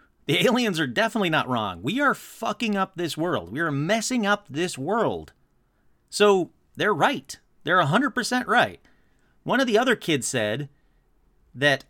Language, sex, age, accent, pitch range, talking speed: English, male, 40-59, American, 130-195 Hz, 155 wpm